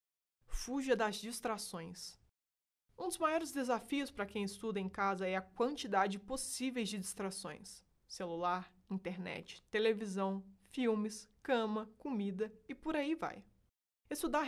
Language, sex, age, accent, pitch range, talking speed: Portuguese, female, 20-39, Brazilian, 195-265 Hz, 120 wpm